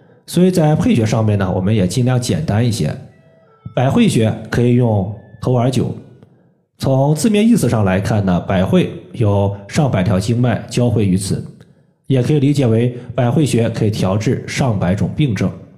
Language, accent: Chinese, native